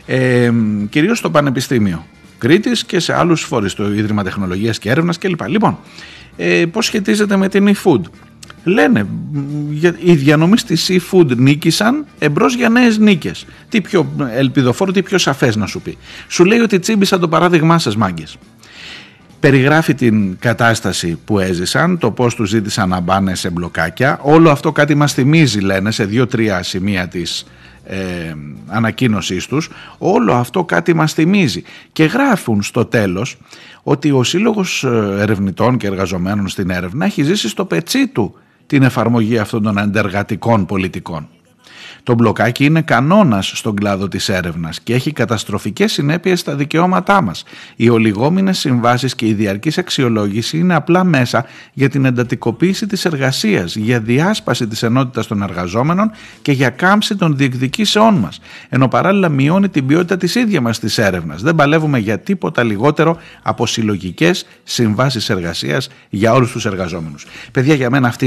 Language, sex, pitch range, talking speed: Greek, male, 105-170 Hz, 150 wpm